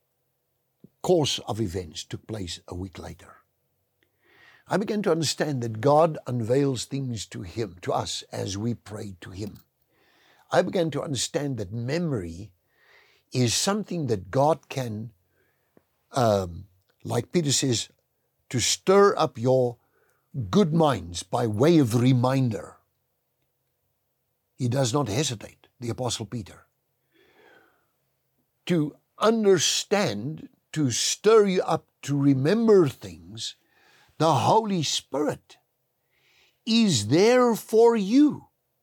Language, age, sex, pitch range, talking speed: English, 60-79, male, 105-165 Hz, 115 wpm